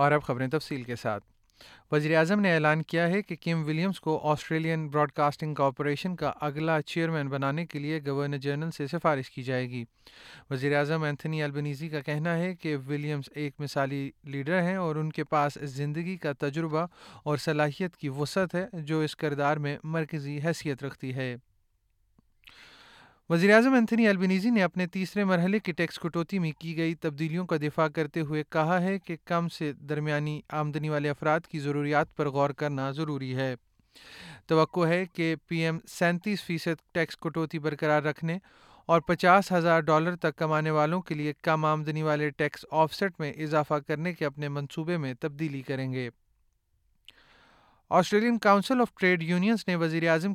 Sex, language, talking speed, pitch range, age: male, Urdu, 170 wpm, 150-175 Hz, 30-49